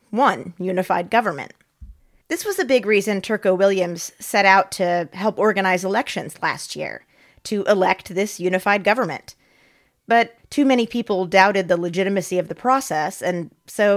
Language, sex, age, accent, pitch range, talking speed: English, female, 30-49, American, 190-255 Hz, 150 wpm